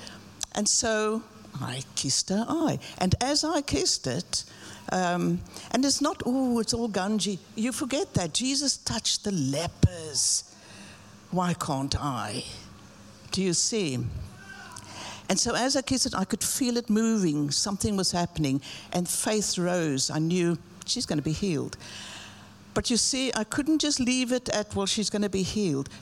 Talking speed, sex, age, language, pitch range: 165 wpm, female, 60-79, English, 170-255 Hz